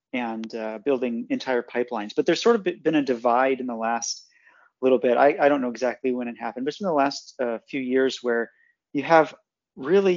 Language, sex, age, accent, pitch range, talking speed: English, male, 30-49, American, 120-150 Hz, 210 wpm